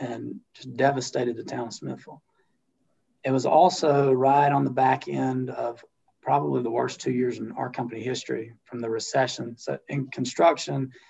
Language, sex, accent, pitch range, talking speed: English, male, American, 120-140 Hz, 170 wpm